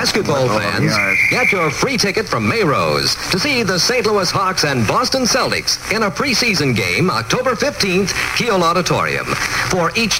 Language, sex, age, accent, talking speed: English, male, 50-69, American, 160 wpm